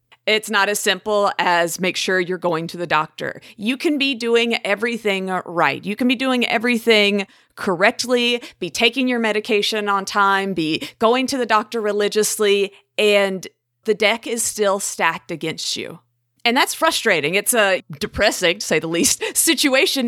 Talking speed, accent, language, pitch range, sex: 165 wpm, American, English, 190-250 Hz, female